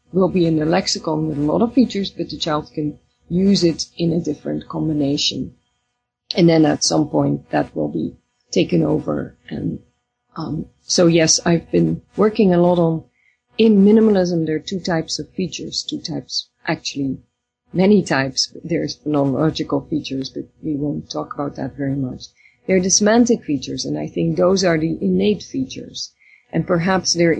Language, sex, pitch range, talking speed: English, female, 140-180 Hz, 175 wpm